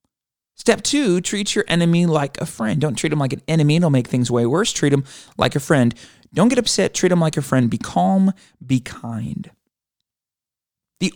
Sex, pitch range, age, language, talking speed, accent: male, 145-185 Hz, 30-49, English, 200 wpm, American